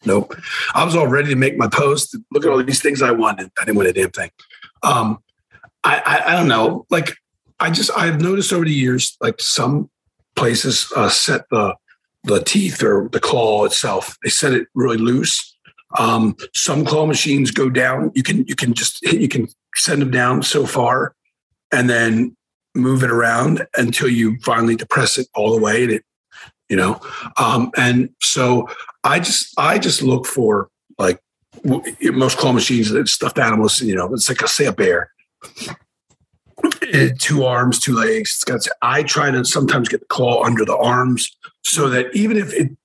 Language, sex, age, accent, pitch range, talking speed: English, male, 40-59, American, 120-160 Hz, 190 wpm